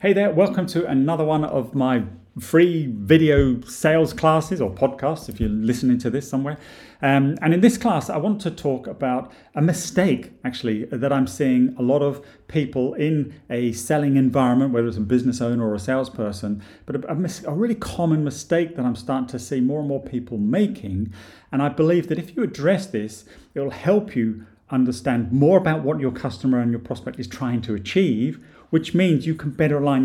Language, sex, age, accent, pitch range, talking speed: English, male, 40-59, British, 120-155 Hz, 200 wpm